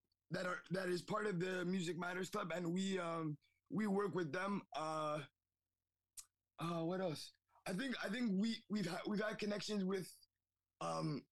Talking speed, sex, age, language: 175 wpm, male, 20-39, English